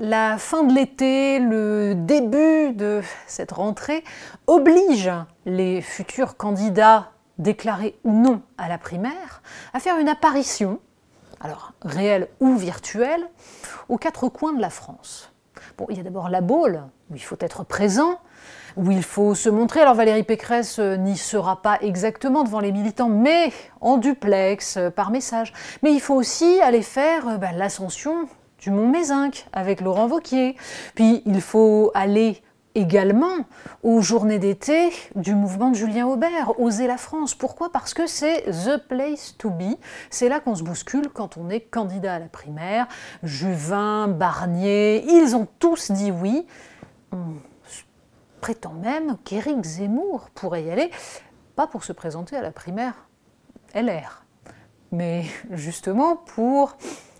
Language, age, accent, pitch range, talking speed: French, 30-49, French, 195-270 Hz, 150 wpm